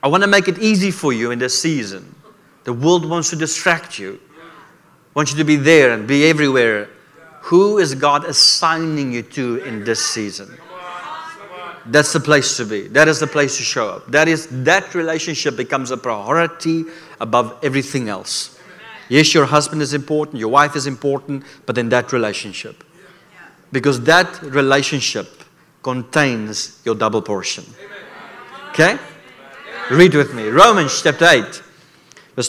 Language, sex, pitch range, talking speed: English, male, 125-155 Hz, 155 wpm